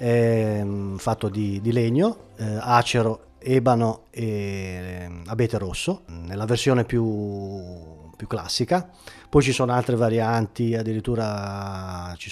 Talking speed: 115 wpm